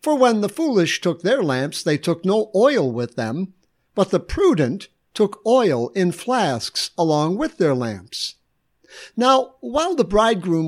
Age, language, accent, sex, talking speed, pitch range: 60-79, English, American, male, 155 wpm, 145-200 Hz